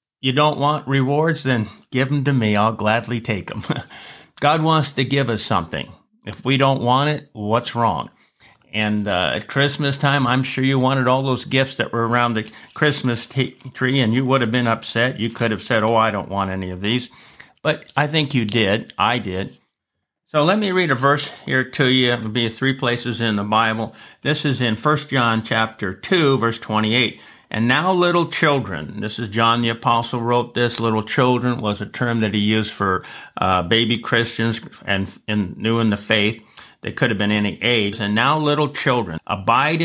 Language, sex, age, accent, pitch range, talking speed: English, male, 50-69, American, 110-135 Hz, 200 wpm